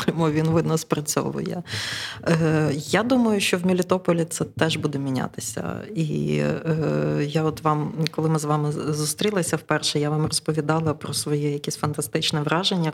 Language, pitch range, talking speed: Ukrainian, 150-170 Hz, 150 wpm